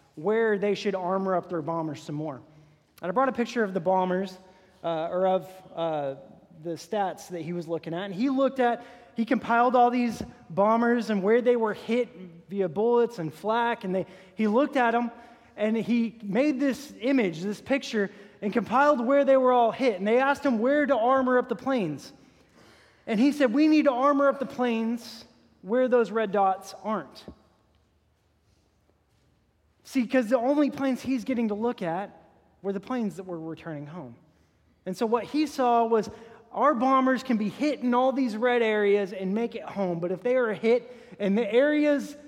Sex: male